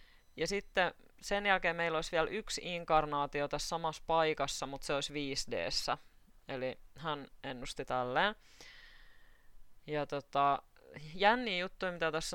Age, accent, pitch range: 20-39, native, 135-165 Hz